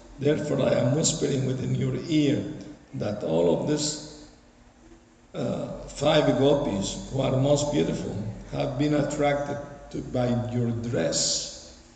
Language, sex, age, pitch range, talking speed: Spanish, male, 60-79, 125-150 Hz, 115 wpm